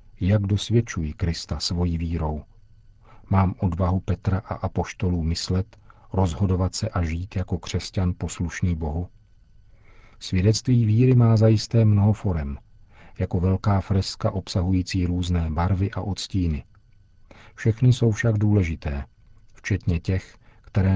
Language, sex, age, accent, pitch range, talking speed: Czech, male, 50-69, native, 90-110 Hz, 115 wpm